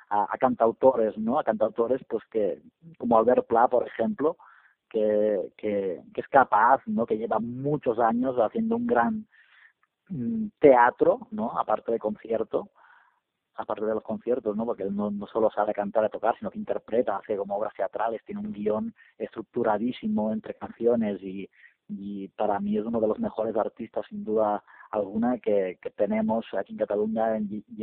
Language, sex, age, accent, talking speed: Spanish, male, 30-49, Spanish, 170 wpm